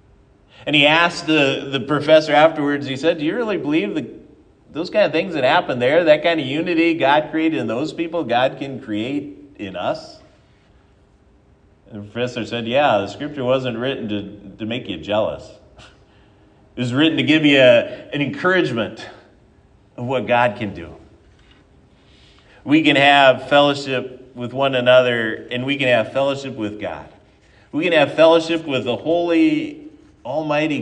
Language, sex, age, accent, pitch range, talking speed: English, male, 40-59, American, 125-155 Hz, 165 wpm